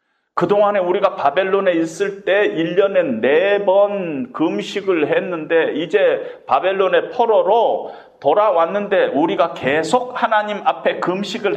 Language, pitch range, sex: Korean, 195-270 Hz, male